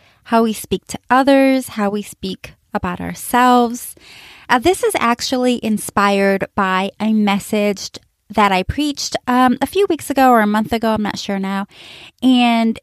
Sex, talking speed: female, 165 wpm